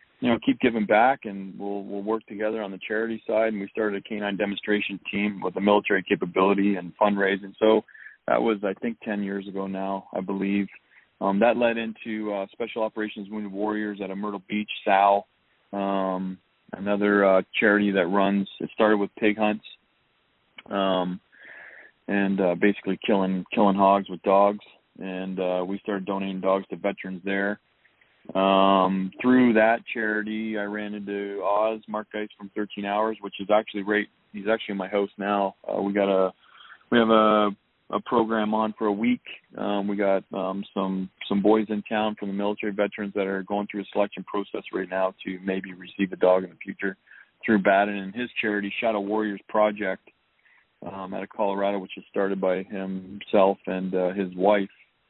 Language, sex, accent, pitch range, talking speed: English, male, American, 95-105 Hz, 180 wpm